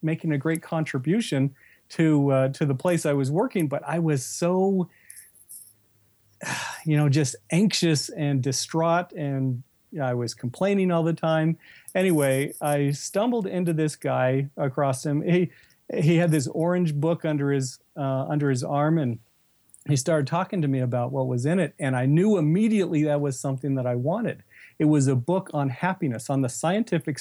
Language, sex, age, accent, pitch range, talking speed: English, male, 40-59, American, 135-170 Hz, 180 wpm